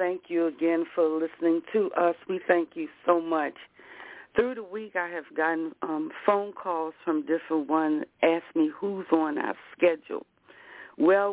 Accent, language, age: American, English, 60-79